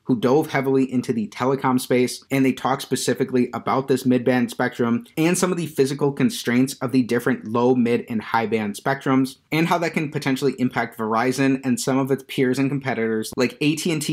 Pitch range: 120-145 Hz